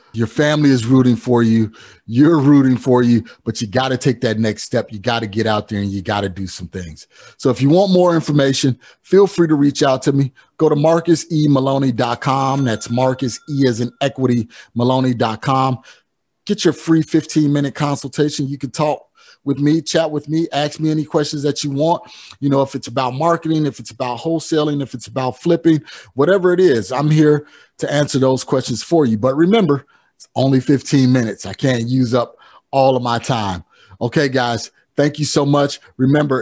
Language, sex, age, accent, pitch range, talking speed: English, male, 30-49, American, 125-155 Hz, 195 wpm